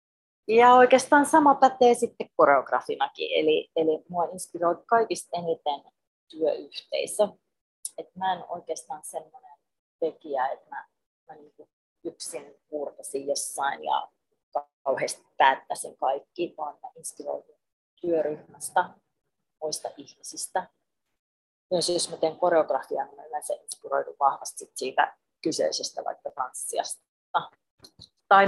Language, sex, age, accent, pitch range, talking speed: Finnish, female, 30-49, native, 155-210 Hz, 105 wpm